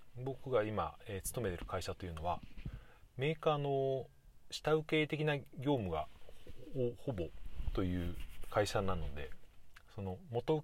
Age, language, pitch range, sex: 30-49, Japanese, 90-125 Hz, male